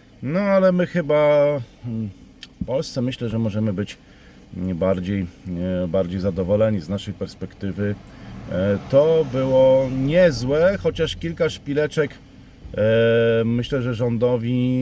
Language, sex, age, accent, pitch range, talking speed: Polish, male, 40-59, native, 95-130 Hz, 100 wpm